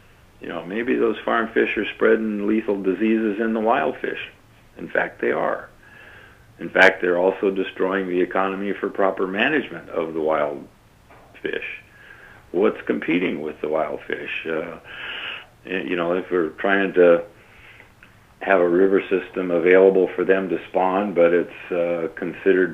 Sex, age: male, 50-69